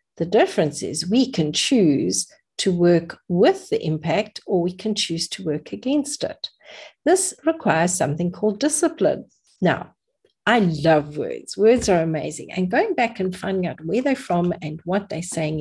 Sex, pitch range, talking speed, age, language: female, 170-235 Hz, 170 wpm, 50-69, English